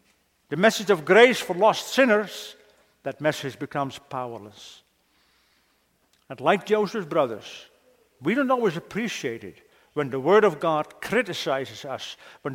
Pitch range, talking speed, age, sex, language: 140-200 Hz, 135 wpm, 50-69, male, English